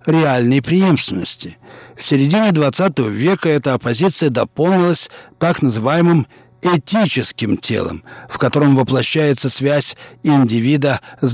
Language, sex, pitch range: Russian, male, 130-170 Hz